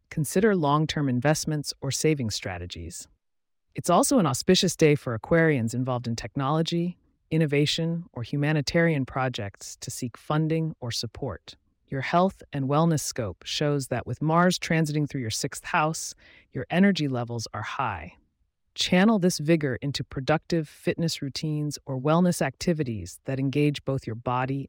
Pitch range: 120-160 Hz